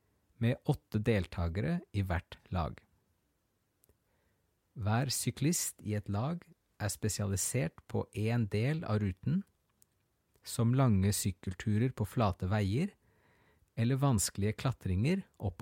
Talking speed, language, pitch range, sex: 110 wpm, English, 95-120 Hz, male